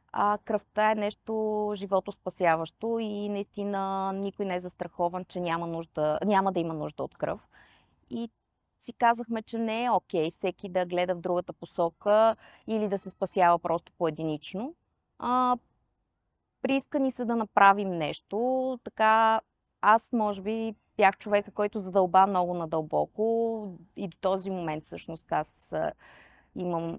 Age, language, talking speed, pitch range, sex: 20-39, Bulgarian, 135 wpm, 180-235 Hz, female